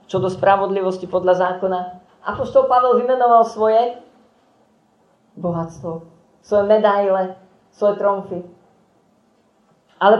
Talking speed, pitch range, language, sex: 95 wpm, 175-225 Hz, Slovak, female